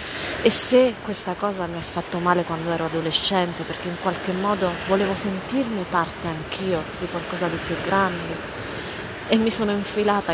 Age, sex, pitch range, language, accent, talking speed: 30-49, female, 175-220 Hz, Italian, native, 165 wpm